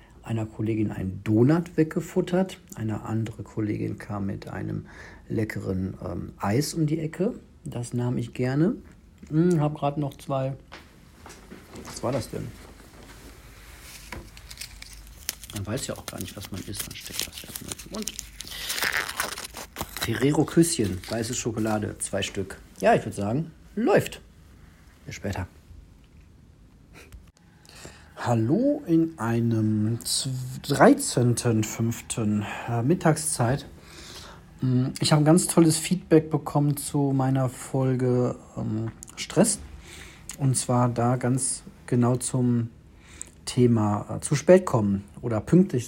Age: 60-79